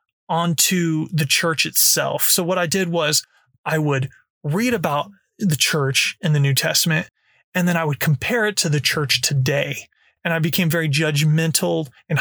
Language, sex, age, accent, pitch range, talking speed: English, male, 30-49, American, 145-175 Hz, 170 wpm